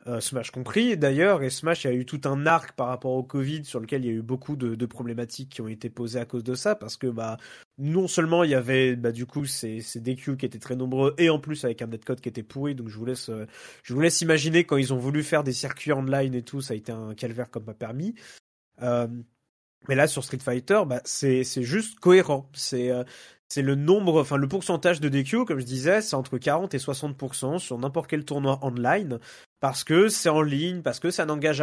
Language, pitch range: French, 125-155 Hz